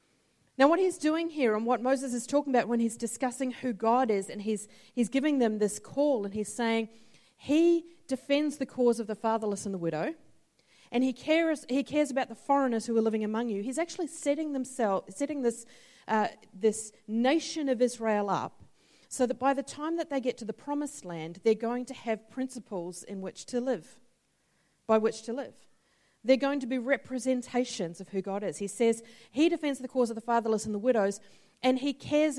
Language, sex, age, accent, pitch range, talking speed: English, female, 40-59, Australian, 210-275 Hz, 205 wpm